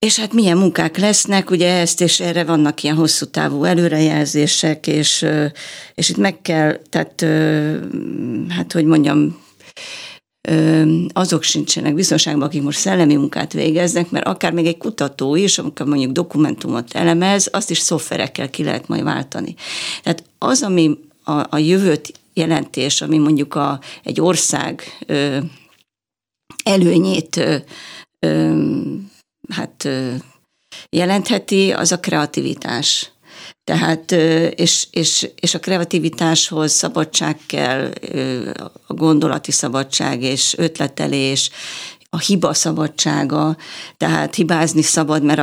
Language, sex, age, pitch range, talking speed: Hungarian, female, 50-69, 150-175 Hz, 110 wpm